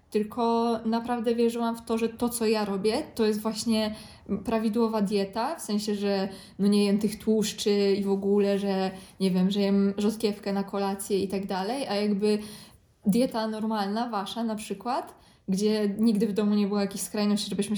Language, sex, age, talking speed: Polish, female, 20-39, 180 wpm